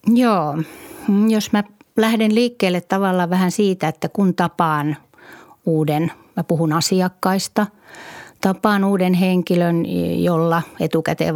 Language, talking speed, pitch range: Finnish, 105 wpm, 160-195 Hz